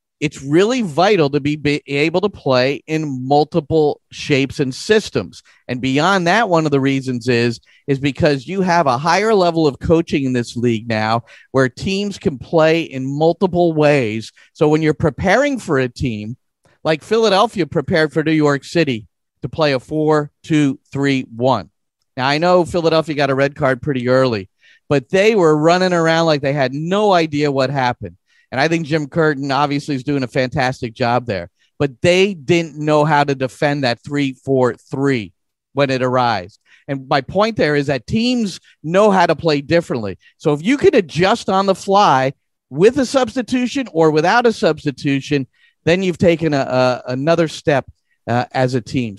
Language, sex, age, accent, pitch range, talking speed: English, male, 40-59, American, 130-170 Hz, 175 wpm